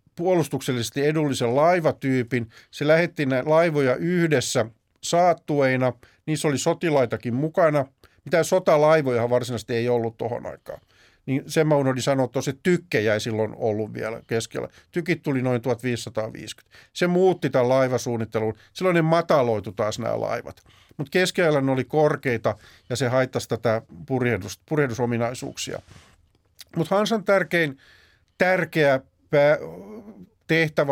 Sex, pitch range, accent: male, 125-165 Hz, native